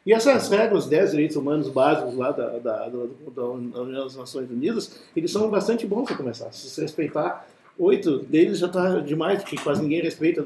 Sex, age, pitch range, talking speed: male, 50-69, 150-210 Hz, 195 wpm